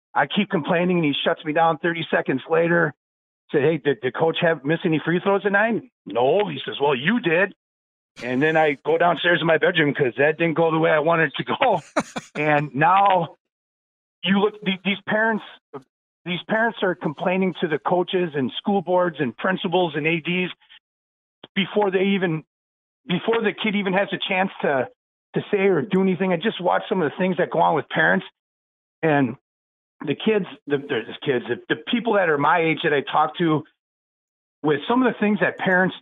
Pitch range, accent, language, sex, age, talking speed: 150-190 Hz, American, English, male, 40-59, 200 wpm